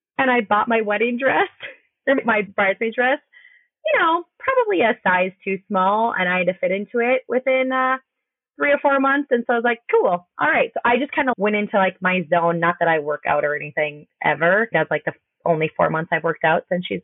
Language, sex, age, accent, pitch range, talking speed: English, female, 20-39, American, 170-240 Hz, 230 wpm